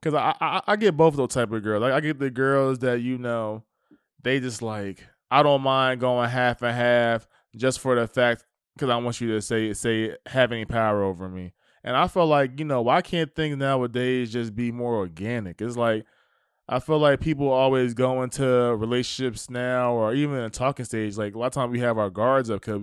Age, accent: 20-39, American